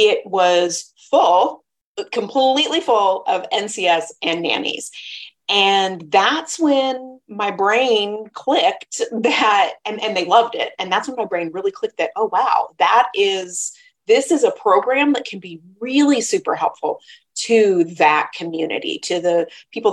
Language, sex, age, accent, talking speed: English, female, 30-49, American, 150 wpm